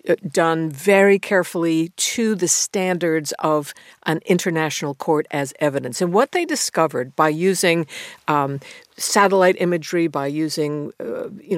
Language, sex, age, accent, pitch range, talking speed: English, female, 60-79, American, 155-195 Hz, 130 wpm